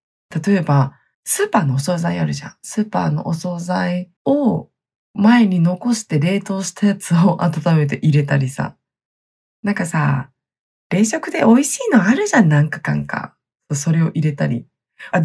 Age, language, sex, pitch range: 20-39, Japanese, female, 145-210 Hz